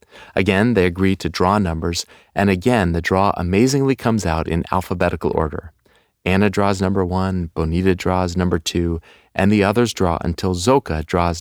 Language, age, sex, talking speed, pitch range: English, 40-59, male, 165 wpm, 85-110 Hz